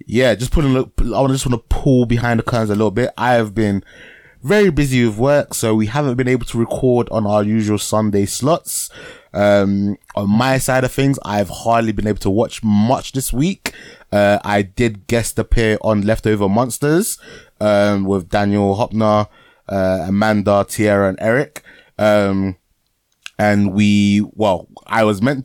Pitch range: 100-120 Hz